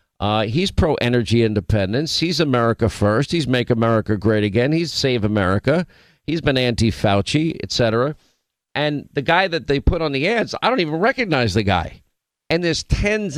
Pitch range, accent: 125-150 Hz, American